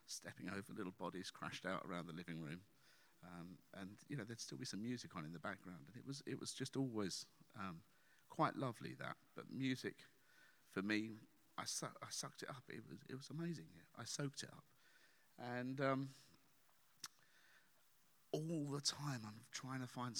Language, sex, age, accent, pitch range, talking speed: English, male, 50-69, British, 90-135 Hz, 185 wpm